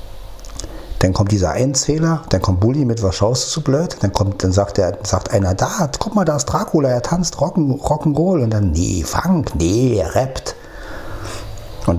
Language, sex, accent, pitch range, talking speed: German, male, German, 90-110 Hz, 195 wpm